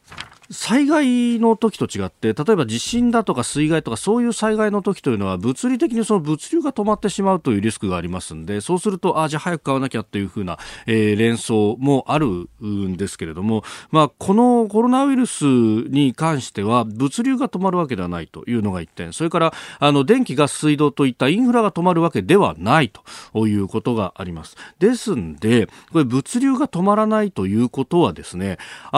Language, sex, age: Japanese, male, 40-59